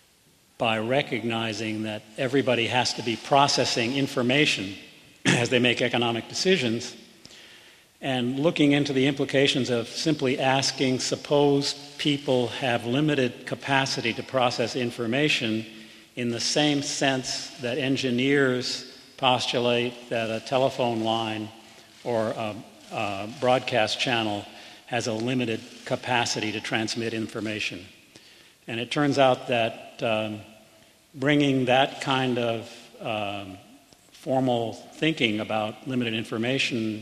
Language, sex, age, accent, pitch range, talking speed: English, male, 50-69, American, 110-135 Hz, 110 wpm